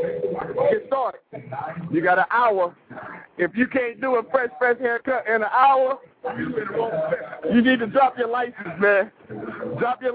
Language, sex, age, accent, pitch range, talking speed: English, male, 40-59, American, 145-200 Hz, 155 wpm